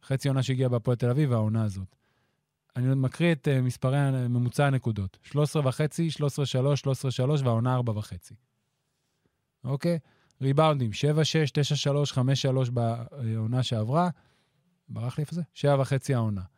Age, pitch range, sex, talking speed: 20-39, 125-155 Hz, male, 135 wpm